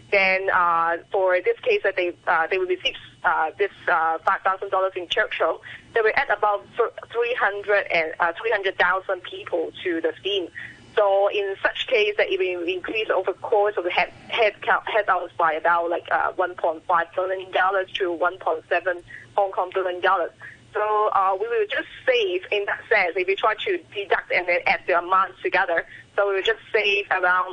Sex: female